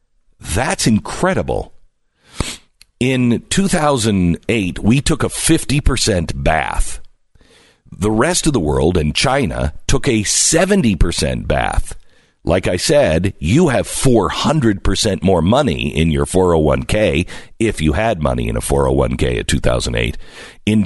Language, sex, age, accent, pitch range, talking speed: English, male, 50-69, American, 85-120 Hz, 120 wpm